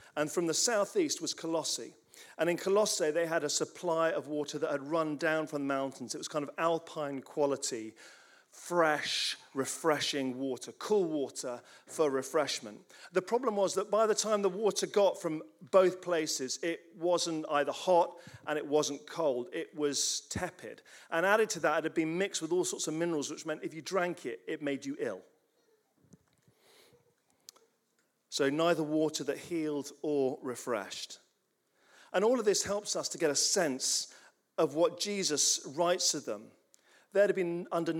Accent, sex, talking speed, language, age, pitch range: British, male, 170 wpm, English, 40-59, 150-180 Hz